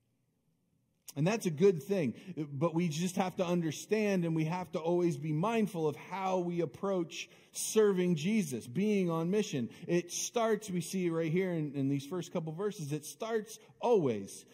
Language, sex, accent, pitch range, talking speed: English, male, American, 145-205 Hz, 175 wpm